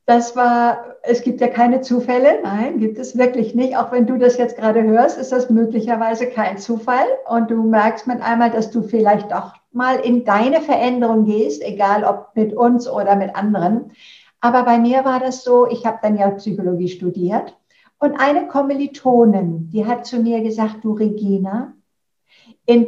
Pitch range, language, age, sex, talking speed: 215-255 Hz, German, 60-79, female, 180 wpm